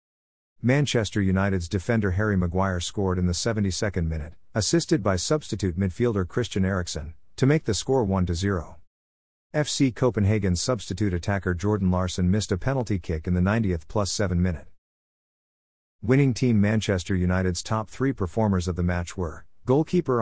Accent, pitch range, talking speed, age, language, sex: American, 90-115 Hz, 145 wpm, 50-69, English, male